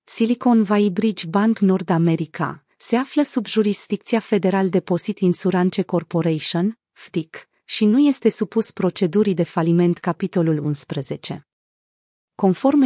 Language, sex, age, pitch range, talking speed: Romanian, female, 30-49, 180-220 Hz, 115 wpm